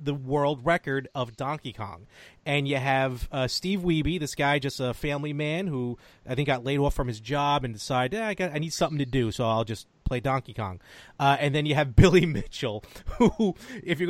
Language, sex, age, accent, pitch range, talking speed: English, male, 30-49, American, 130-175 Hz, 225 wpm